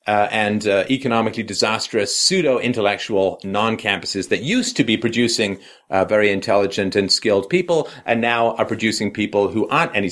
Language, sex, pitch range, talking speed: English, male, 100-140 Hz, 165 wpm